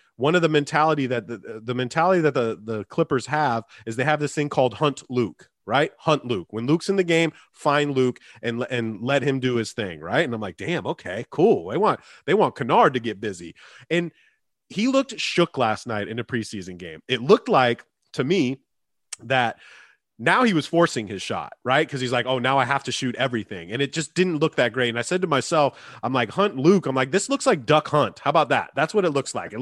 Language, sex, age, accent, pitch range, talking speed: English, male, 30-49, American, 120-165 Hz, 240 wpm